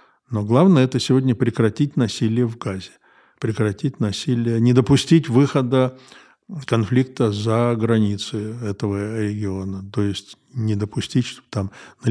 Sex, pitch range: male, 100-120 Hz